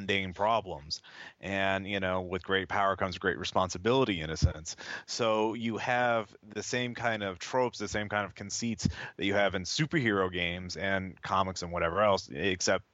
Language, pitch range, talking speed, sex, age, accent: English, 95-110 Hz, 180 wpm, male, 30-49, American